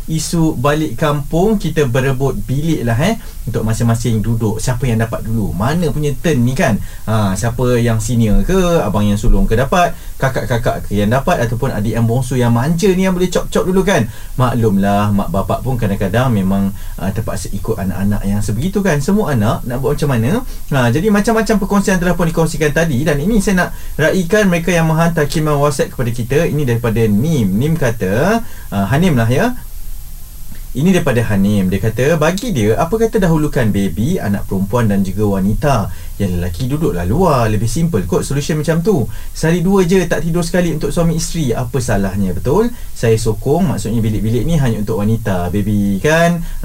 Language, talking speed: Malay, 185 wpm